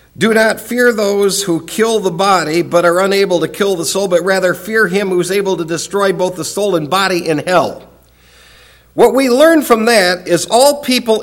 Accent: American